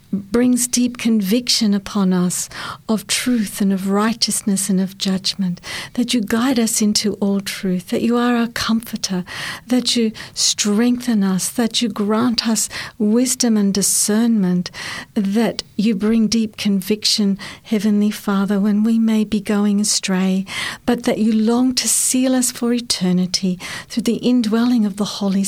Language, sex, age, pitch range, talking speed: English, female, 60-79, 195-235 Hz, 150 wpm